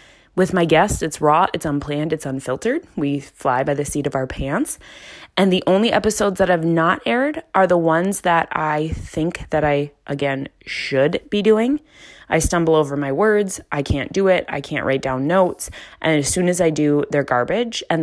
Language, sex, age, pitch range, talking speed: English, female, 20-39, 150-190 Hz, 200 wpm